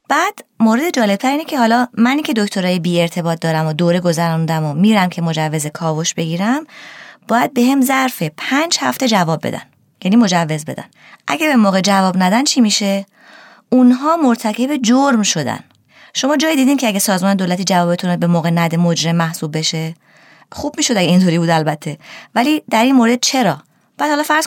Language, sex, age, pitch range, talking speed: Persian, female, 20-39, 175-250 Hz, 170 wpm